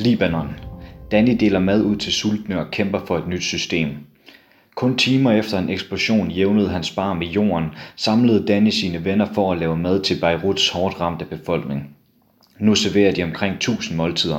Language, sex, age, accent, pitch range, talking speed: Danish, male, 30-49, native, 90-105 Hz, 175 wpm